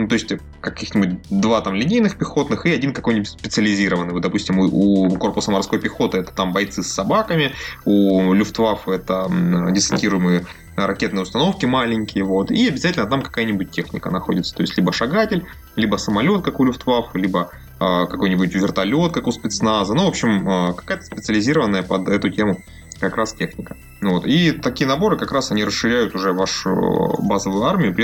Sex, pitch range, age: male, 90-105 Hz, 20-39